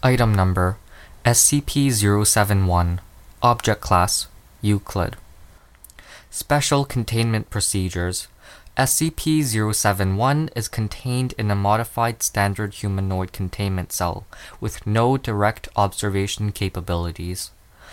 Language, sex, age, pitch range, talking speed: English, male, 20-39, 95-120 Hz, 80 wpm